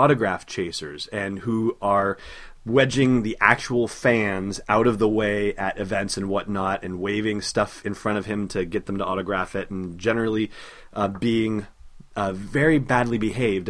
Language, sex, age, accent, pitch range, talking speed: English, male, 30-49, American, 95-110 Hz, 165 wpm